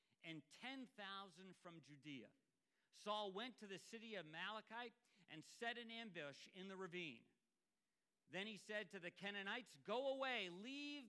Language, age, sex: English, 50-69, male